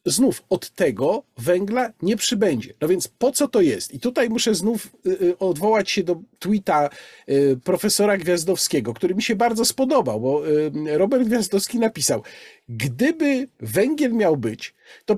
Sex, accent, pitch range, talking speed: male, native, 180-245 Hz, 140 wpm